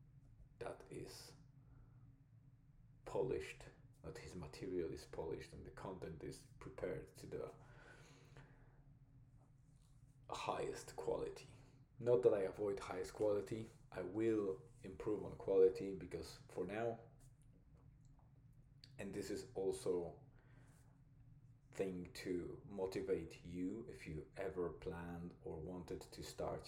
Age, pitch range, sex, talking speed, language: 40-59, 115-140 Hz, male, 105 wpm, English